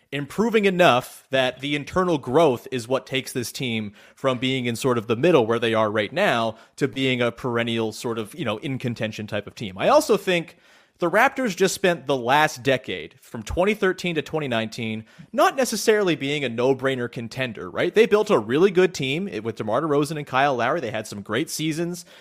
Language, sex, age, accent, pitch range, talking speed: English, male, 30-49, American, 125-175 Hz, 200 wpm